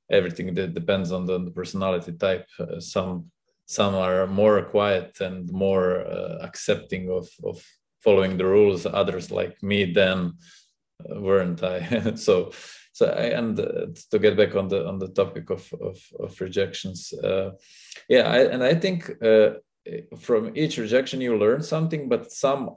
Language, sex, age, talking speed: English, male, 20-39, 160 wpm